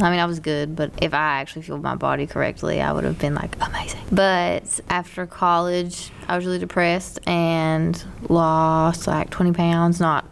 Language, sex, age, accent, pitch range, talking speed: English, female, 20-39, American, 155-170 Hz, 185 wpm